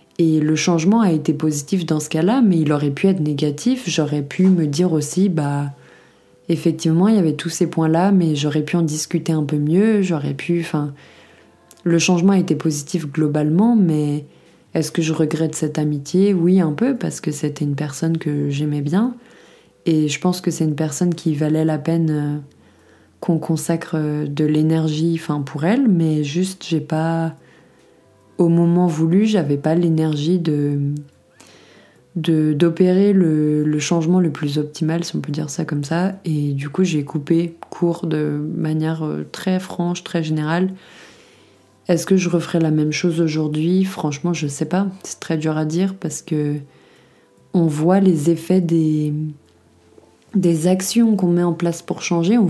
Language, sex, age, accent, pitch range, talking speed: French, female, 20-39, French, 150-180 Hz, 175 wpm